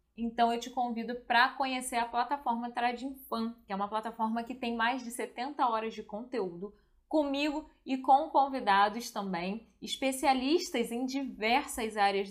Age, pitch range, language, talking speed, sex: 20-39, 205-260 Hz, Portuguese, 145 wpm, female